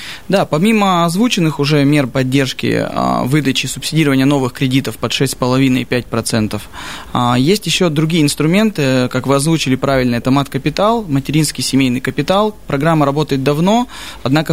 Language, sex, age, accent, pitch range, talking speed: Russian, male, 20-39, native, 130-155 Hz, 135 wpm